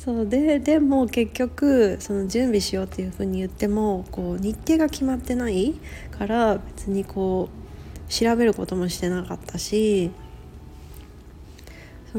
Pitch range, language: 175-220 Hz, Japanese